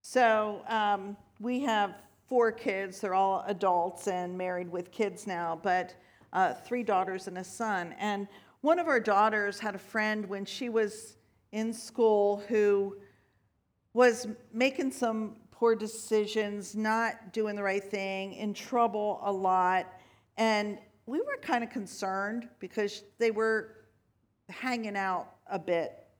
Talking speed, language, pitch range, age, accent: 140 wpm, English, 200-255 Hz, 50-69, American